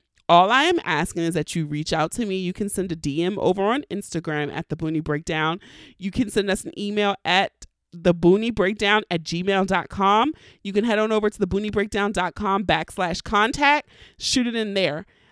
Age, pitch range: 30-49, 180-230 Hz